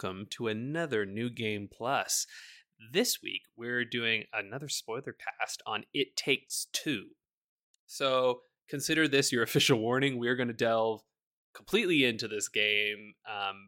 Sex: male